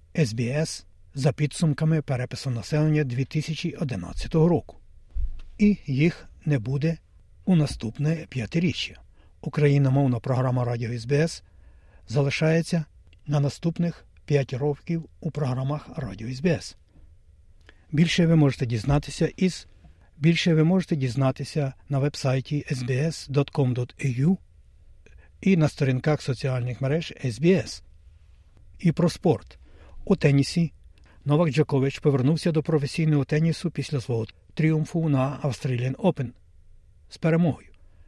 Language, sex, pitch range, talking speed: Ukrainian, male, 95-160 Hz, 95 wpm